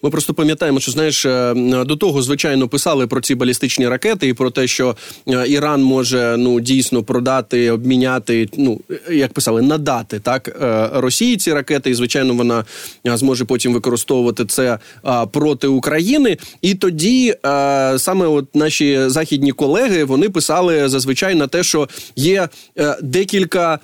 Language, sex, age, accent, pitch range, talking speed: Ukrainian, male, 20-39, native, 130-180 Hz, 140 wpm